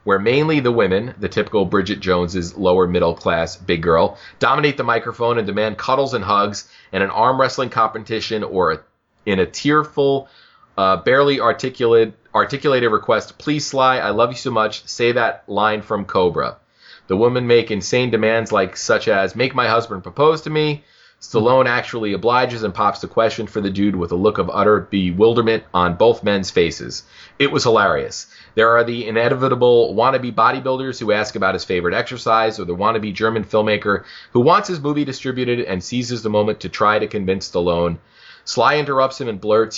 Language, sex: English, male